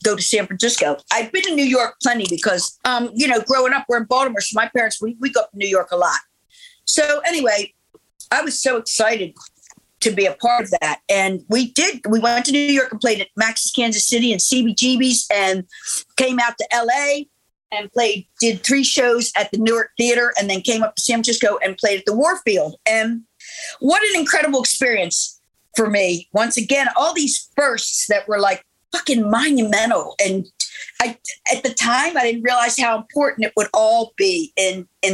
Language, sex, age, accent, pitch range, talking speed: English, female, 50-69, American, 200-260 Hz, 200 wpm